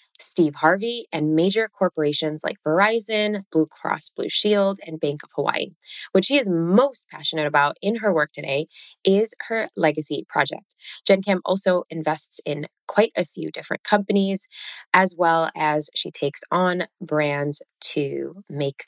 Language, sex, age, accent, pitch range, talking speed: English, female, 20-39, American, 155-200 Hz, 155 wpm